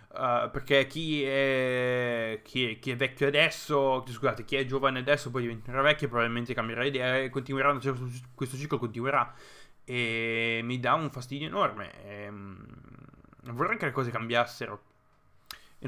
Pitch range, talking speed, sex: 115-135 Hz, 155 wpm, male